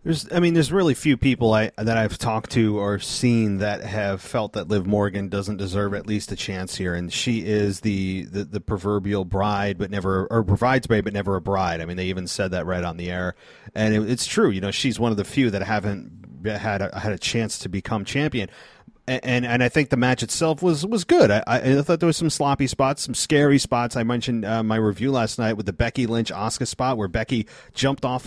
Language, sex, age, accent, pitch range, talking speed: English, male, 30-49, American, 105-140 Hz, 240 wpm